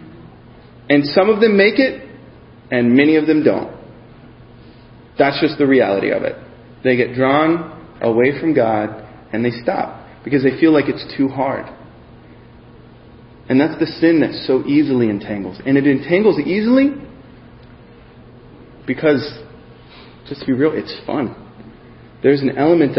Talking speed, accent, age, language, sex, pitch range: 145 wpm, American, 30-49, English, male, 120-175 Hz